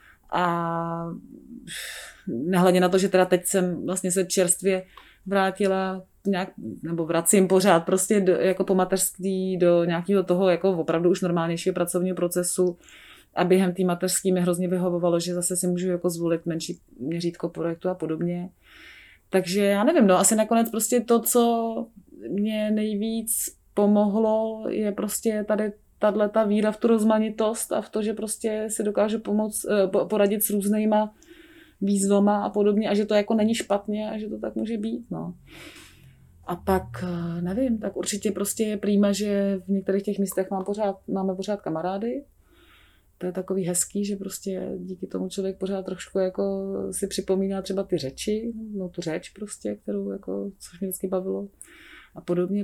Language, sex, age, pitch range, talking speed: Czech, female, 30-49, 180-210 Hz, 160 wpm